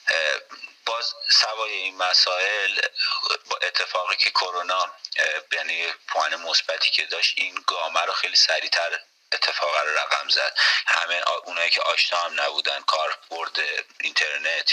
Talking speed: 125 wpm